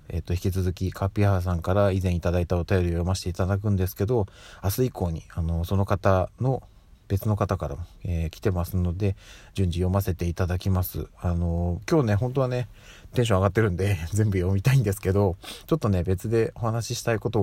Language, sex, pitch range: Japanese, male, 90-110 Hz